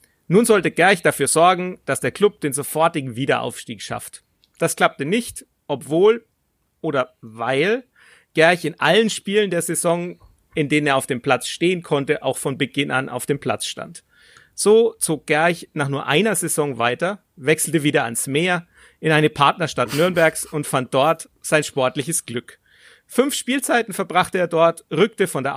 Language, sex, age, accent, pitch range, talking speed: German, male, 40-59, German, 140-175 Hz, 165 wpm